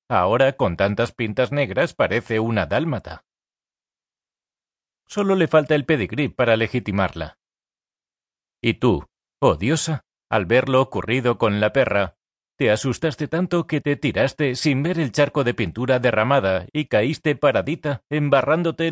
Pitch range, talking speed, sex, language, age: 110-145 Hz, 135 wpm, male, Spanish, 40-59